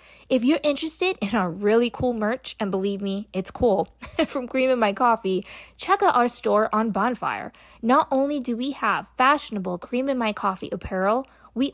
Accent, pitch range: American, 195-255 Hz